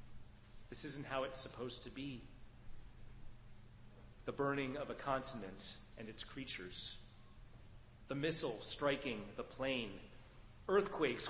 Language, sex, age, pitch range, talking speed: English, male, 30-49, 115-140 Hz, 110 wpm